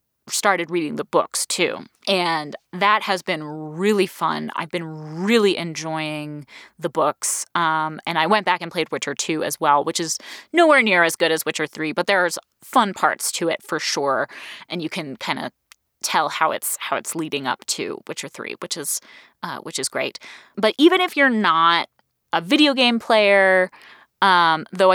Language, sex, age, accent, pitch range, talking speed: English, female, 20-39, American, 155-195 Hz, 185 wpm